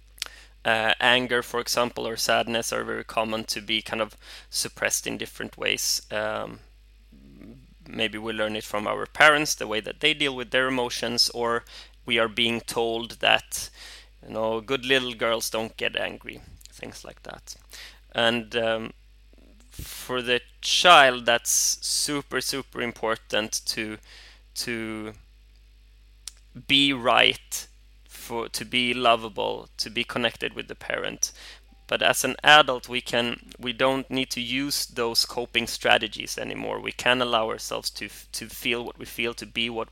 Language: English